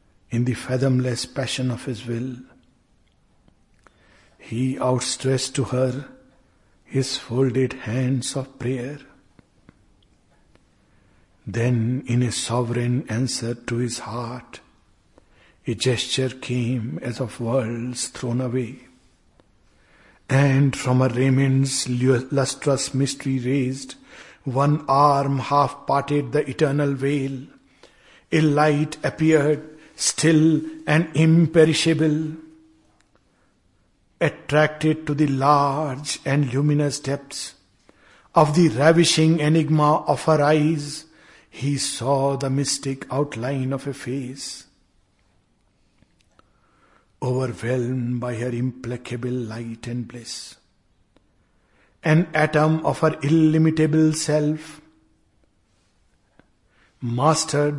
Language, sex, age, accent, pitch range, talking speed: Hindi, male, 60-79, native, 125-150 Hz, 90 wpm